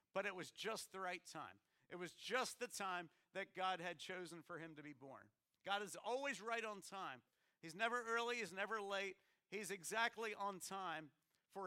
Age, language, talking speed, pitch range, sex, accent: 50-69, English, 195 wpm, 160-195 Hz, male, American